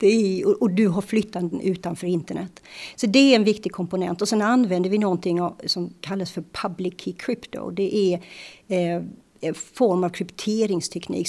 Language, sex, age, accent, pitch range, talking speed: Swedish, female, 50-69, native, 180-210 Hz, 155 wpm